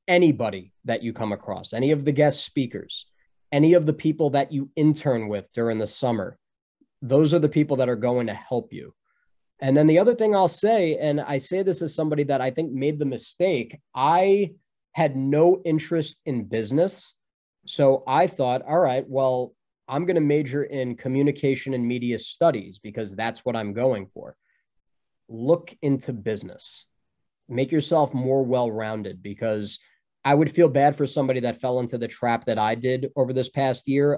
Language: English